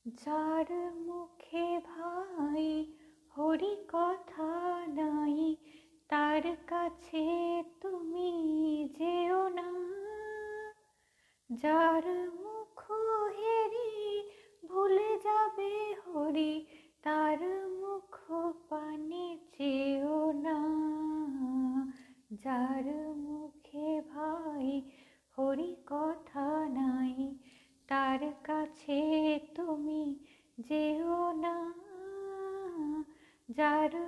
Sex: female